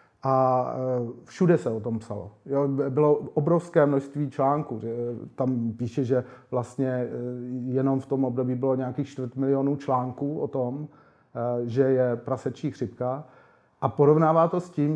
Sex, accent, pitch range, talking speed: male, native, 125-145 Hz, 130 wpm